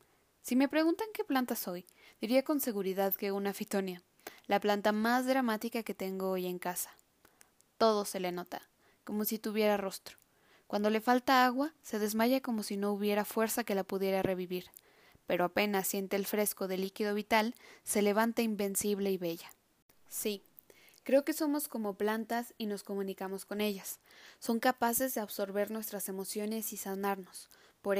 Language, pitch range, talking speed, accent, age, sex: Spanish, 195-230 Hz, 165 wpm, Mexican, 10-29, female